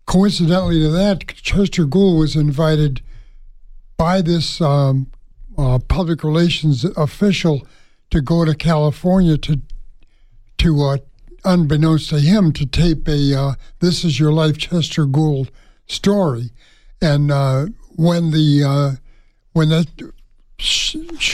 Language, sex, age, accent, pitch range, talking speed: English, male, 60-79, American, 140-170 Hz, 120 wpm